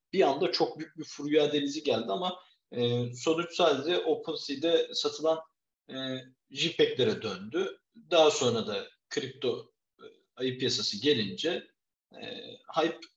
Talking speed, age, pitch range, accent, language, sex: 105 wpm, 50-69, 125-175 Hz, native, Turkish, male